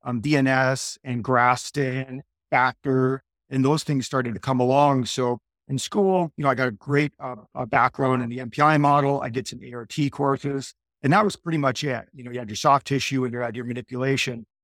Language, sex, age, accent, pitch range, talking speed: English, male, 50-69, American, 125-140 Hz, 210 wpm